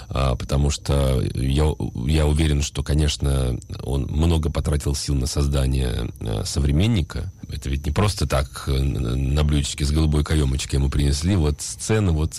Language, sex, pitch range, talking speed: Russian, male, 75-100 Hz, 140 wpm